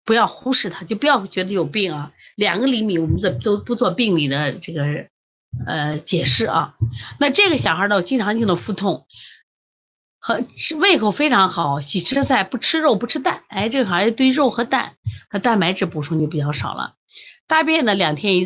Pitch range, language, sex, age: 155-240 Hz, Chinese, female, 30-49